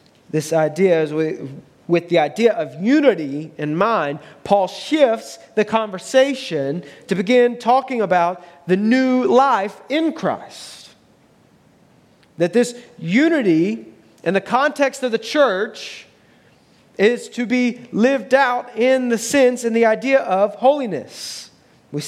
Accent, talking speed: American, 125 wpm